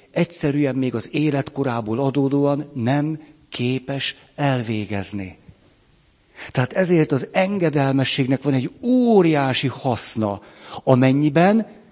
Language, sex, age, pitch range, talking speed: Hungarian, male, 60-79, 125-165 Hz, 85 wpm